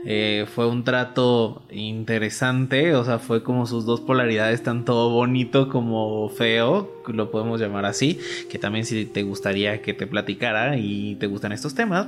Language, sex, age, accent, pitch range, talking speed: Spanish, male, 20-39, Mexican, 120-150 Hz, 165 wpm